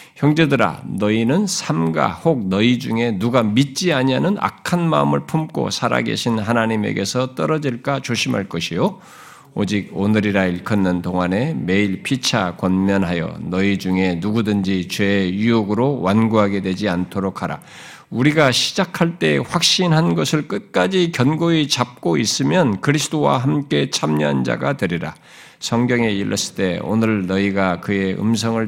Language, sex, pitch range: Korean, male, 90-125 Hz